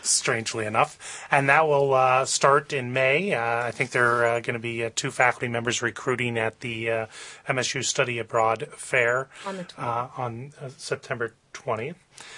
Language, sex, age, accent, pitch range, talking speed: English, male, 30-49, American, 115-135 Hz, 165 wpm